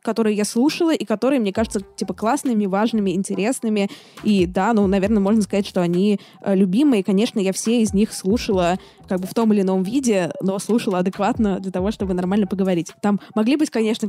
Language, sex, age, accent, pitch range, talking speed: Russian, female, 20-39, native, 185-215 Hz, 190 wpm